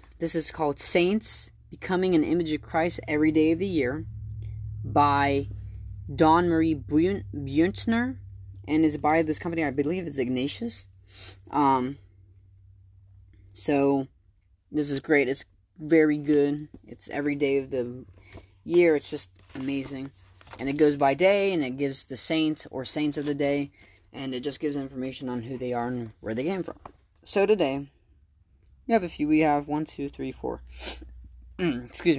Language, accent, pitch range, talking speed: English, American, 95-150 Hz, 160 wpm